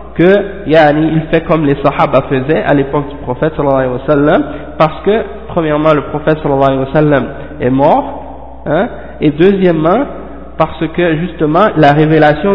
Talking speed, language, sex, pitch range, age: 165 wpm, French, male, 135-165 Hz, 50-69